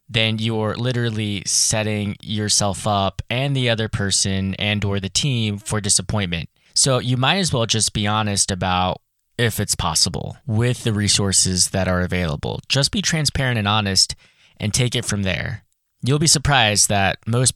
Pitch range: 100-125 Hz